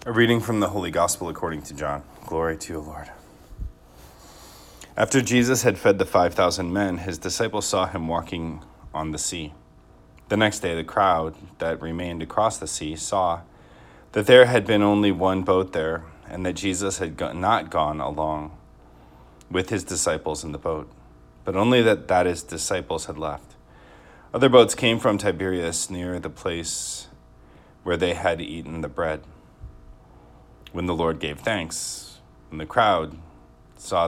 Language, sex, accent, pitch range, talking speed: English, male, American, 70-95 Hz, 160 wpm